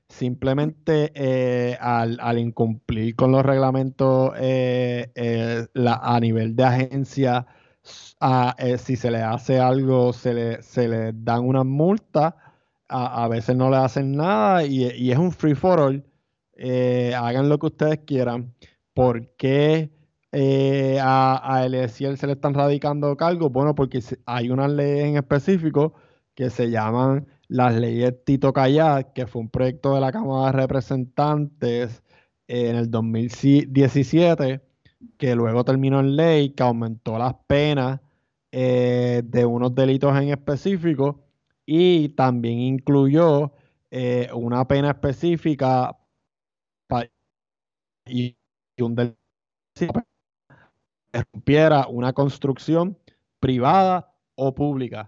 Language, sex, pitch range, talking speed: Spanish, male, 125-145 Hz, 130 wpm